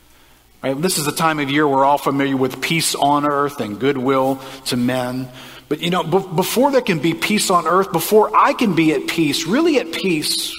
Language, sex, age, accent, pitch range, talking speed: English, male, 50-69, American, 130-175 Hz, 205 wpm